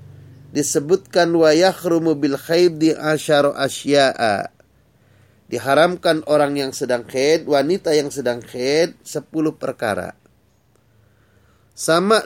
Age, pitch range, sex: 30-49, 135-170 Hz, male